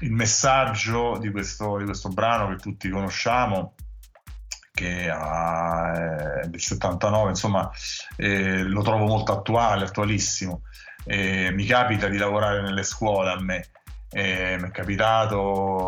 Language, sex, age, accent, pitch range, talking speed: Italian, male, 30-49, native, 95-110 Hz, 125 wpm